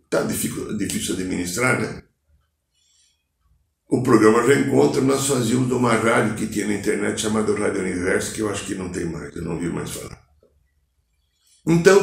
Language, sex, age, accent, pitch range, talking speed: Portuguese, male, 60-79, Brazilian, 80-110 Hz, 160 wpm